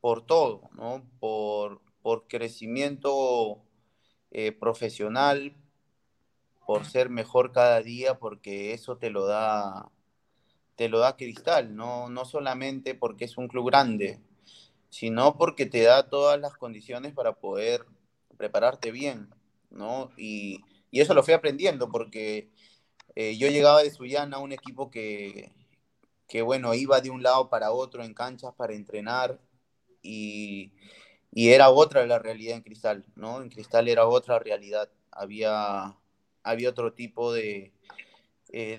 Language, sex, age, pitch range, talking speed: Spanish, male, 30-49, 110-135 Hz, 140 wpm